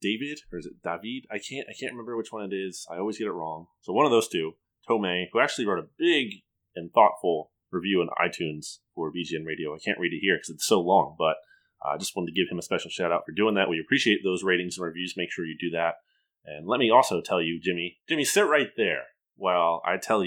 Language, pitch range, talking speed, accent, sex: English, 85-110 Hz, 255 wpm, American, male